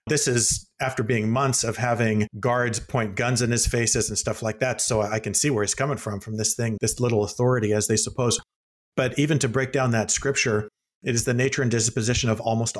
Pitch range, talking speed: 115-135 Hz, 230 wpm